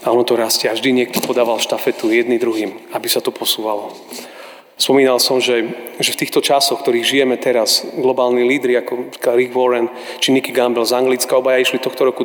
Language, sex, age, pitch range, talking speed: Slovak, male, 30-49, 120-140 Hz, 190 wpm